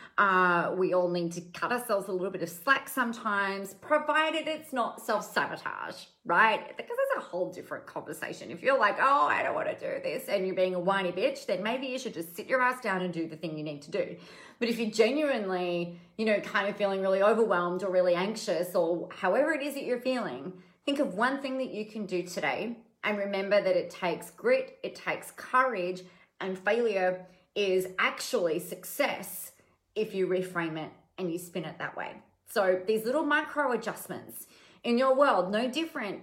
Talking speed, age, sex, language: 200 wpm, 30-49, female, English